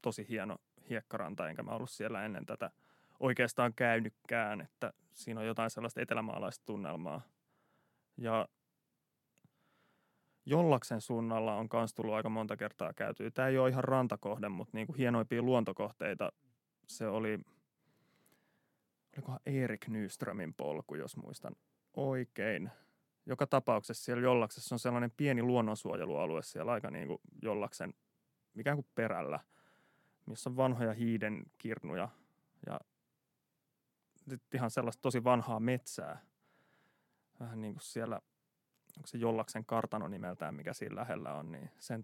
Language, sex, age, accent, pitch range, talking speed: Finnish, male, 30-49, native, 110-130 Hz, 125 wpm